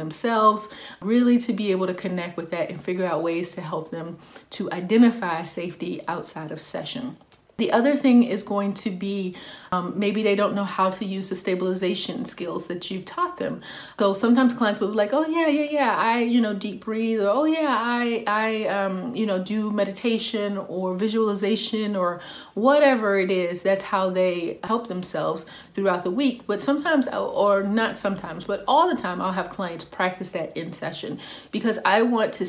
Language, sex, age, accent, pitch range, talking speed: English, female, 30-49, American, 180-225 Hz, 190 wpm